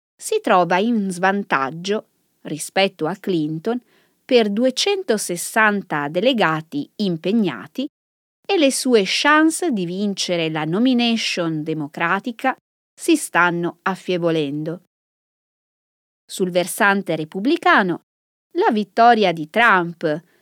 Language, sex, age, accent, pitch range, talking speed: Italian, female, 20-39, native, 170-240 Hz, 90 wpm